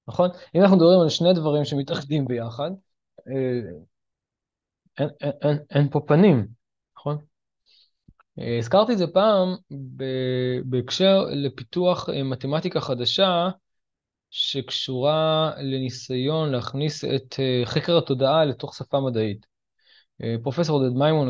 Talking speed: 100 wpm